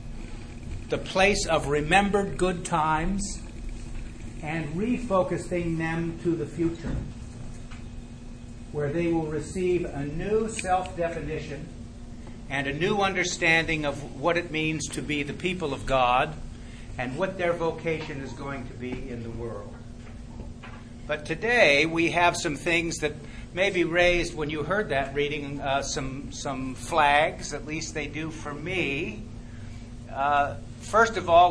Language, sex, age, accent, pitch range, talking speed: English, male, 60-79, American, 120-170 Hz, 140 wpm